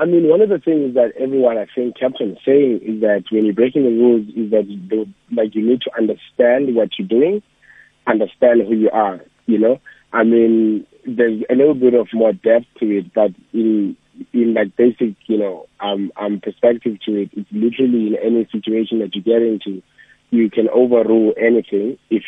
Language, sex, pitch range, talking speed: English, male, 105-120 Hz, 200 wpm